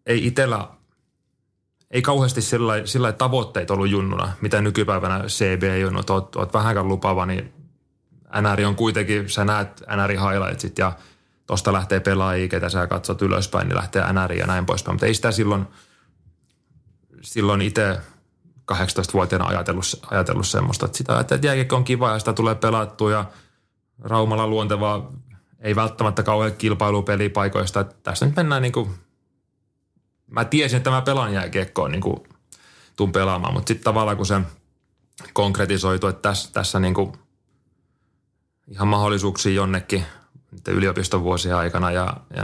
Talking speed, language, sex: 130 wpm, Finnish, male